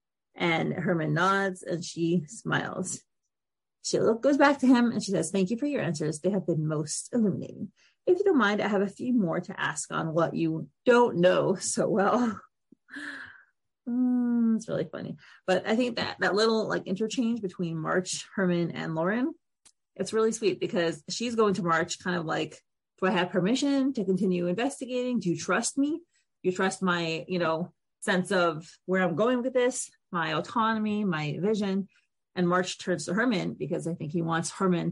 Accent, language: American, English